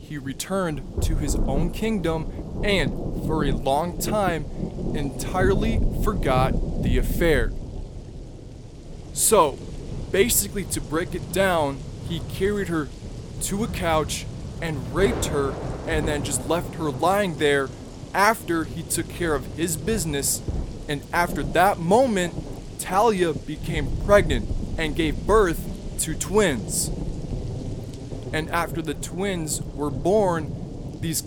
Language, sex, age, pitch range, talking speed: English, male, 20-39, 140-180 Hz, 120 wpm